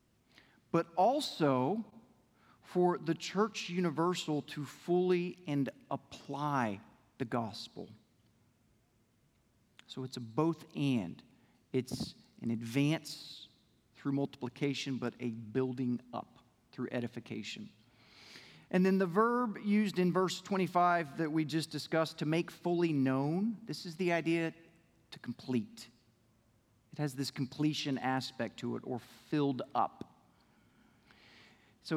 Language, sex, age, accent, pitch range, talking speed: English, male, 40-59, American, 120-170 Hz, 115 wpm